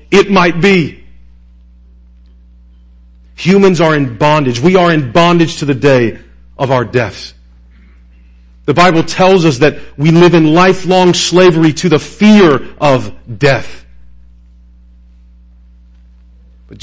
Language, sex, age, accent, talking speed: English, male, 40-59, American, 120 wpm